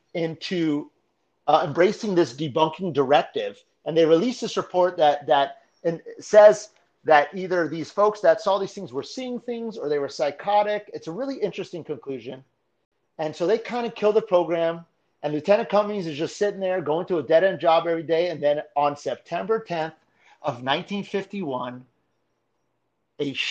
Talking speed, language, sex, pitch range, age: 165 wpm, English, male, 150-195 Hz, 40-59